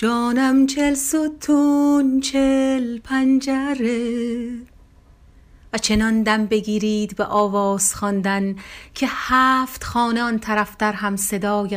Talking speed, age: 100 wpm, 40-59